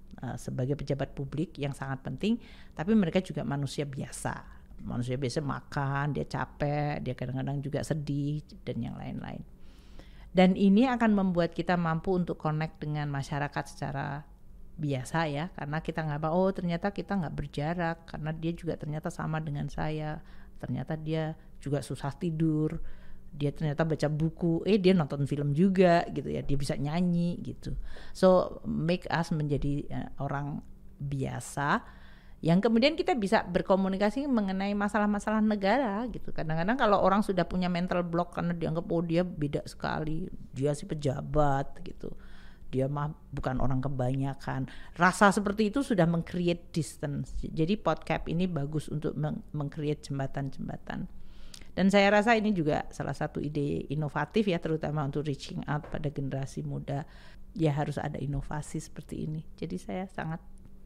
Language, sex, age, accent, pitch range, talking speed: Indonesian, female, 50-69, native, 140-180 Hz, 145 wpm